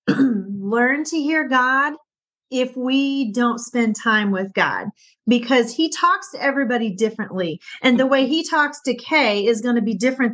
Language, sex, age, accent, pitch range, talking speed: English, female, 30-49, American, 220-275 Hz, 170 wpm